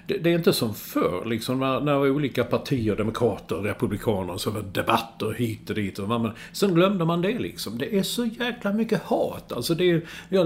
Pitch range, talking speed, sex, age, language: 105-150 Hz, 200 wpm, male, 50-69, English